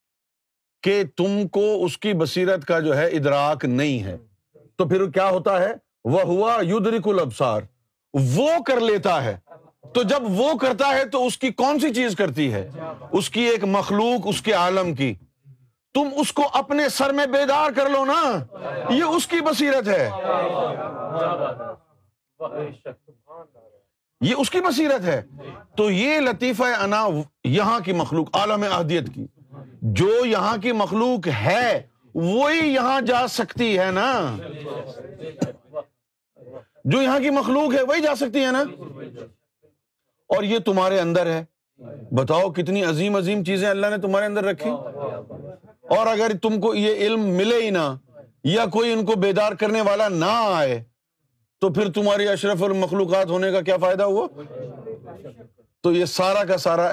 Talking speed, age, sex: 155 wpm, 50-69, male